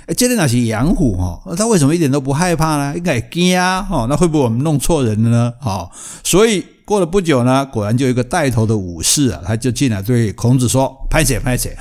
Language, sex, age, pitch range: Chinese, male, 60-79, 110-160 Hz